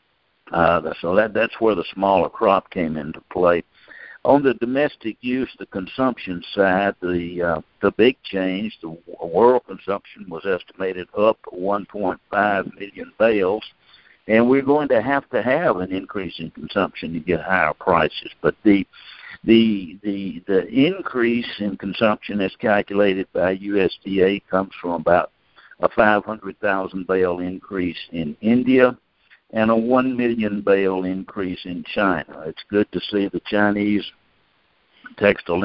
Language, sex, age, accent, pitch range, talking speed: English, male, 60-79, American, 95-115 Hz, 140 wpm